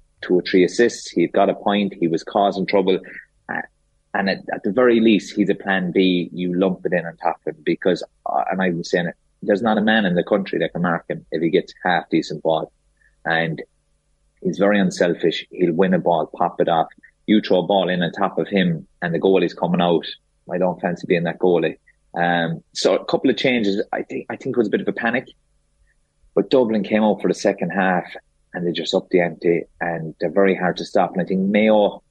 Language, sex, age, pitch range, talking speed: English, male, 30-49, 85-100 Hz, 240 wpm